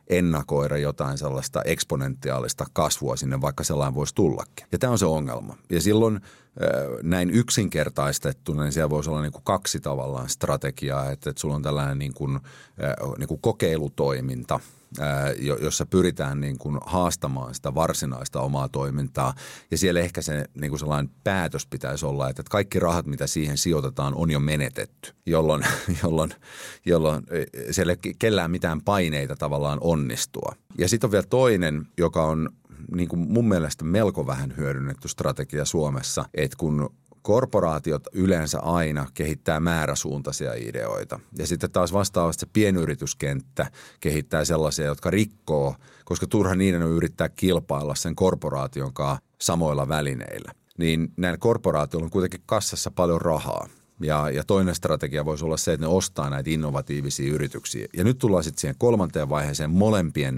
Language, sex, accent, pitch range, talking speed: Finnish, male, native, 70-90 Hz, 150 wpm